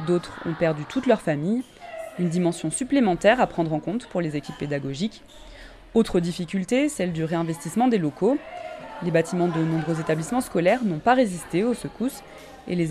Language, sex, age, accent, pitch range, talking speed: French, female, 20-39, French, 165-230 Hz, 170 wpm